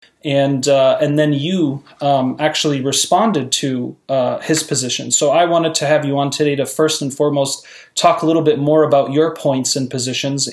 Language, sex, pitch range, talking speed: English, male, 140-155 Hz, 195 wpm